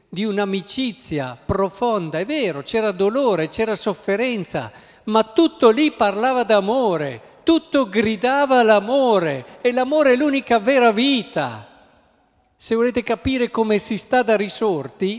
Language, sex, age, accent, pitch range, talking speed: Italian, male, 50-69, native, 135-210 Hz, 125 wpm